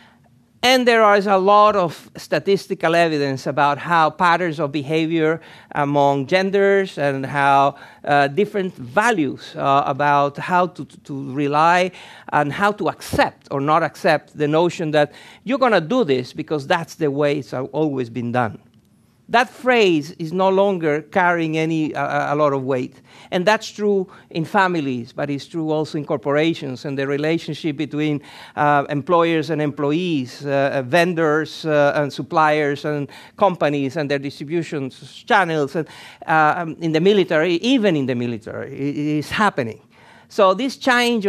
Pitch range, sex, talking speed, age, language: 145-185 Hz, male, 155 wpm, 50-69, English